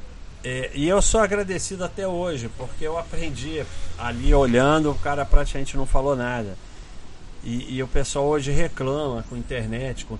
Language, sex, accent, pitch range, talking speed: Portuguese, male, Brazilian, 110-150 Hz, 160 wpm